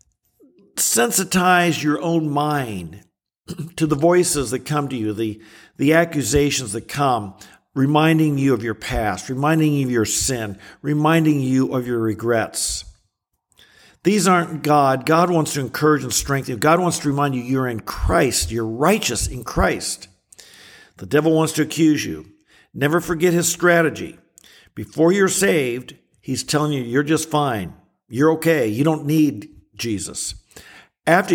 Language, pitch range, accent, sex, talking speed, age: English, 120-155 Hz, American, male, 150 wpm, 50-69